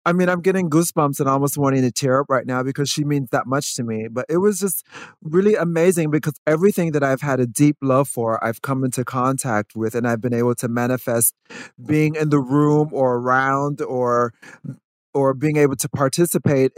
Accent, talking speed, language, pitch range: American, 205 wpm, English, 125-150 Hz